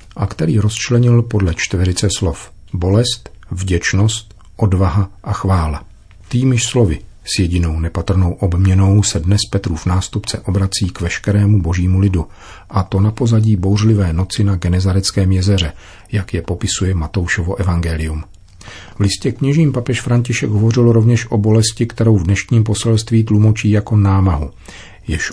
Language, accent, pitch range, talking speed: Czech, native, 90-110 Hz, 135 wpm